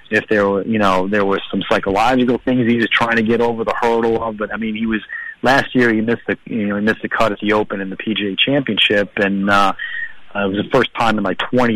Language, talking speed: English, 270 wpm